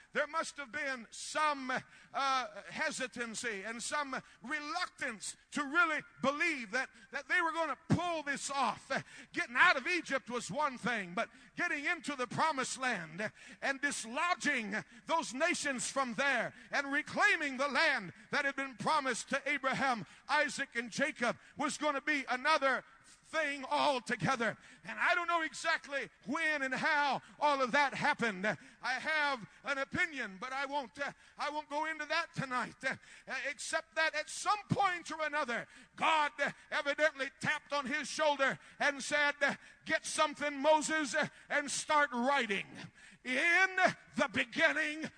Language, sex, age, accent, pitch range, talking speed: English, male, 50-69, American, 265-315 Hz, 150 wpm